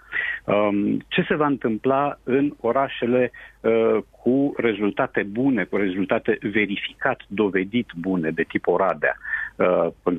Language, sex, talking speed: Romanian, male, 105 wpm